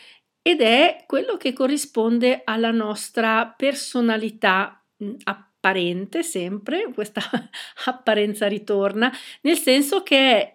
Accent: native